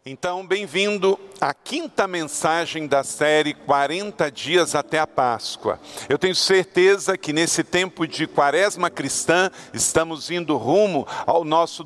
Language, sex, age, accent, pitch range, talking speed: Portuguese, male, 50-69, Brazilian, 155-205 Hz, 130 wpm